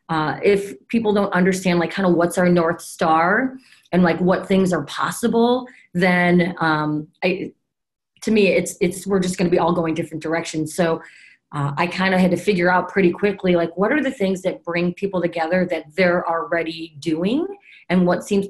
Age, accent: 30-49, American